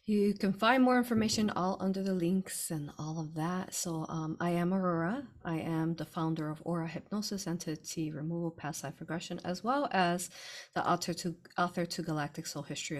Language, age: English, 30-49